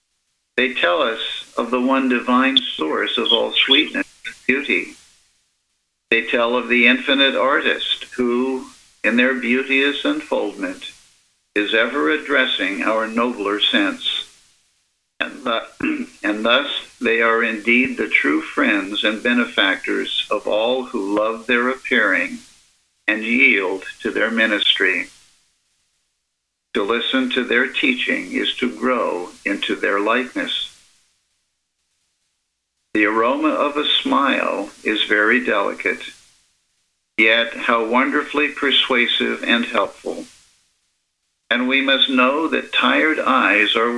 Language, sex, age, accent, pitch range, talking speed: English, male, 60-79, American, 110-135 Hz, 115 wpm